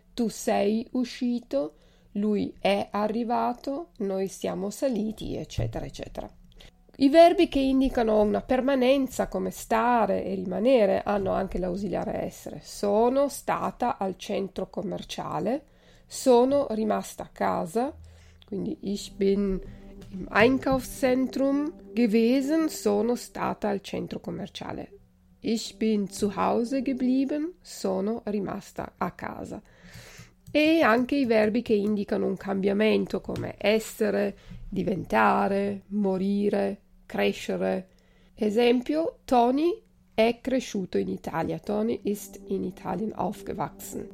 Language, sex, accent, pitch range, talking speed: Italian, female, native, 195-245 Hz, 105 wpm